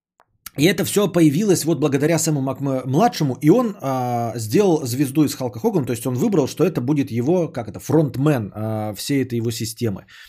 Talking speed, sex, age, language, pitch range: 185 wpm, male, 20-39, Bulgarian, 120-165 Hz